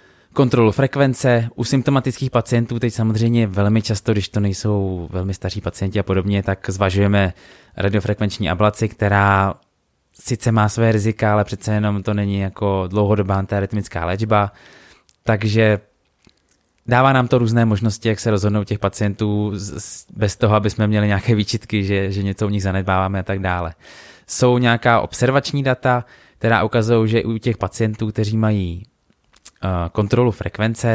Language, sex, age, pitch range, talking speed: Czech, male, 20-39, 100-115 Hz, 150 wpm